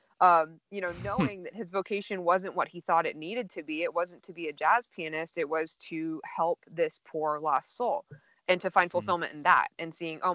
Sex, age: female, 20-39